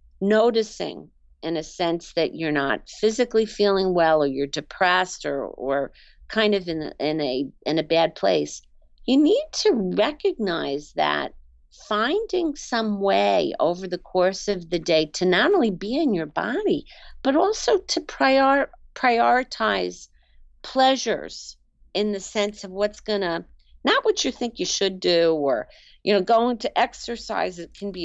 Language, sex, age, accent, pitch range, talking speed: English, female, 50-69, American, 165-245 Hz, 160 wpm